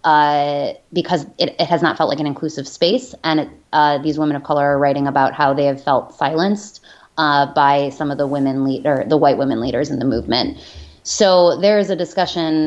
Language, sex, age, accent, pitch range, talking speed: English, female, 20-39, American, 145-165 Hz, 220 wpm